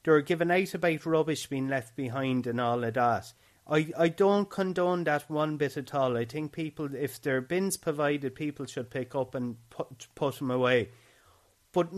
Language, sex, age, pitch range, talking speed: English, male, 30-49, 125-160 Hz, 190 wpm